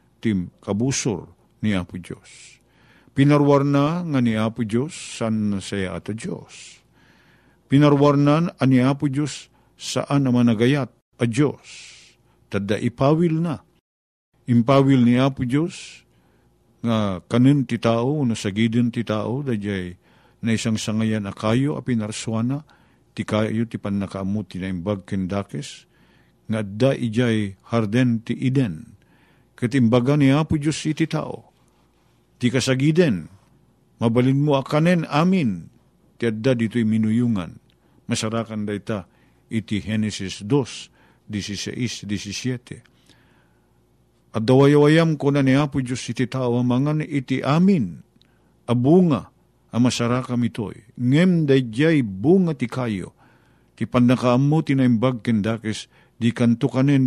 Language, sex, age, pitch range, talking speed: Filipino, male, 50-69, 110-140 Hz, 120 wpm